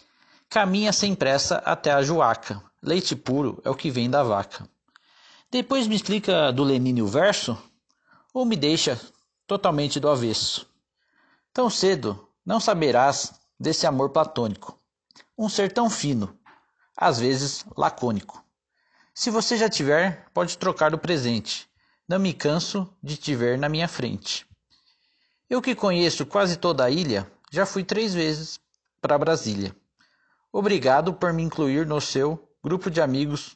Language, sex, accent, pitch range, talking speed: Portuguese, male, Brazilian, 140-205 Hz, 145 wpm